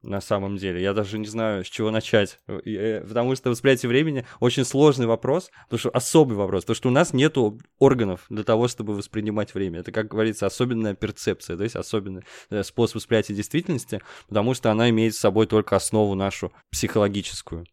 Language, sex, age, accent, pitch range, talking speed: Russian, male, 20-39, native, 100-125 Hz, 180 wpm